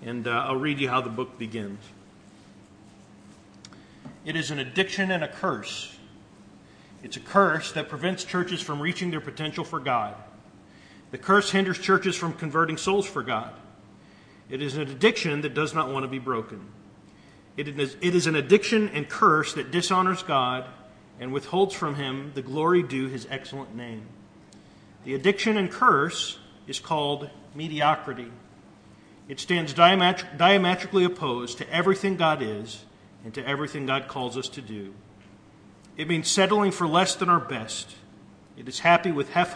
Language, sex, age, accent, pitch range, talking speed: English, male, 40-59, American, 120-175 Hz, 155 wpm